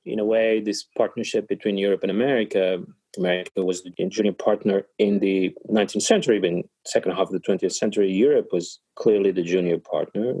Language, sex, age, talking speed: English, male, 30-49, 180 wpm